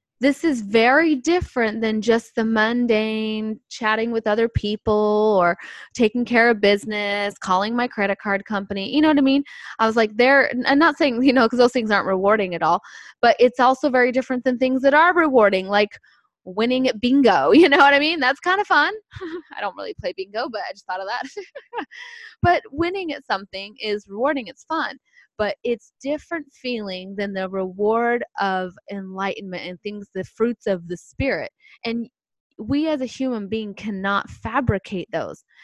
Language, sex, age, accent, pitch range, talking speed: English, female, 10-29, American, 200-270 Hz, 185 wpm